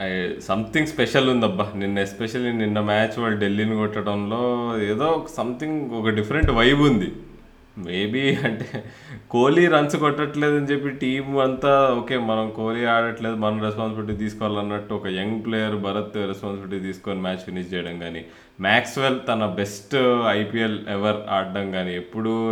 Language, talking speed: Telugu, 135 wpm